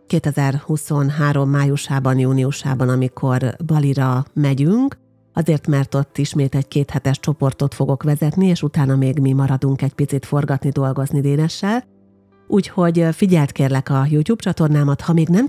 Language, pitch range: Hungarian, 135-160 Hz